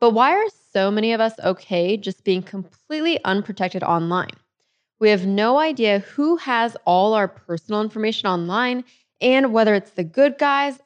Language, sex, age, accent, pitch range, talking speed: English, female, 20-39, American, 190-235 Hz, 165 wpm